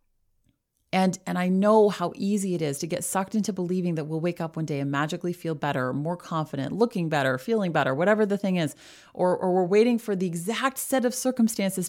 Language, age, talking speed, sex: English, 30-49, 215 wpm, female